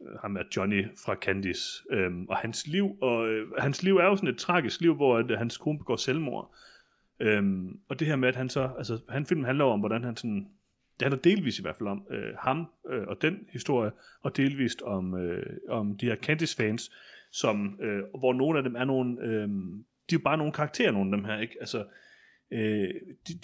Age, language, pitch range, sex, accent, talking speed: 30-49, Danish, 105-140 Hz, male, native, 220 wpm